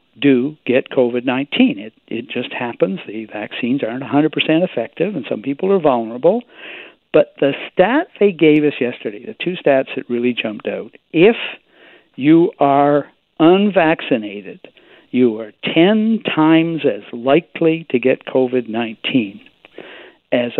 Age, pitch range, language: 60-79, 135-215 Hz, English